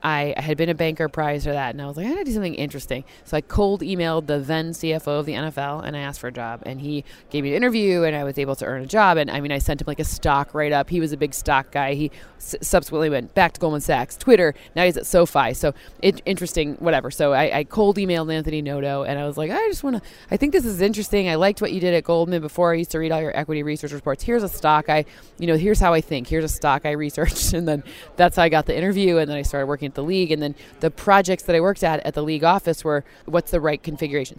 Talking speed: 290 wpm